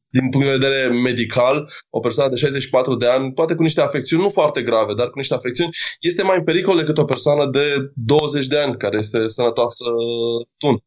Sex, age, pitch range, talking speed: male, 20-39, 125-155 Hz, 205 wpm